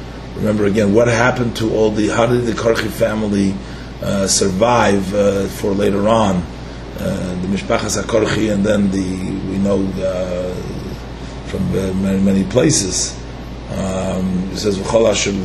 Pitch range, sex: 95-125 Hz, male